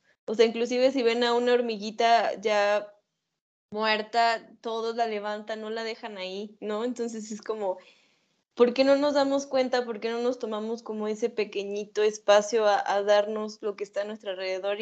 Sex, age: female, 10-29